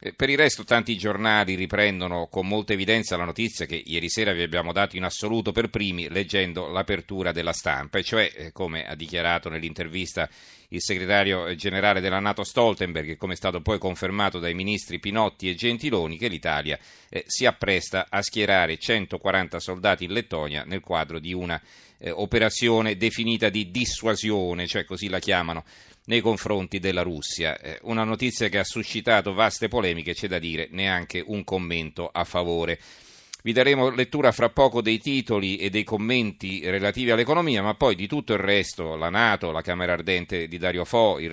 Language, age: Italian, 40-59